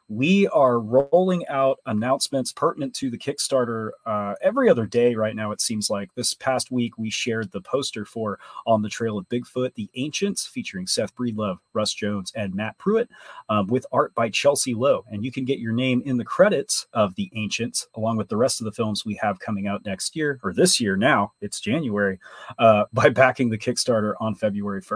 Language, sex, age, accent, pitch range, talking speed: English, male, 30-49, American, 105-135 Hz, 205 wpm